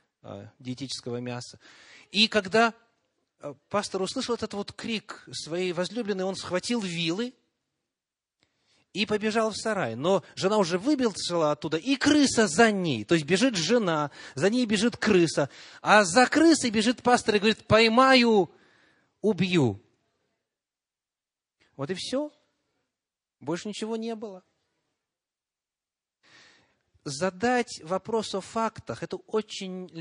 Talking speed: 115 wpm